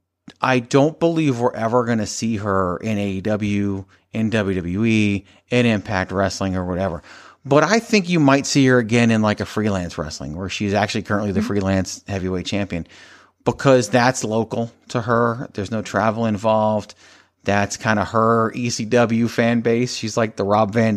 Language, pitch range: English, 100-120 Hz